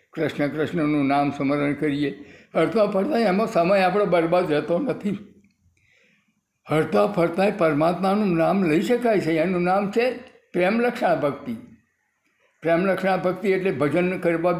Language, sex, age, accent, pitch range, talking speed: Gujarati, male, 60-79, native, 175-210 Hz, 130 wpm